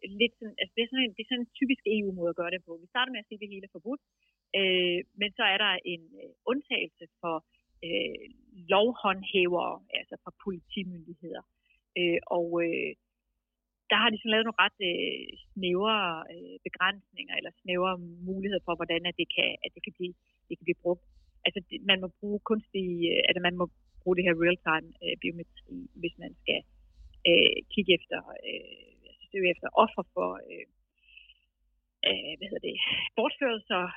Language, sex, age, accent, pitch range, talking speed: Danish, female, 30-49, native, 170-210 Hz, 165 wpm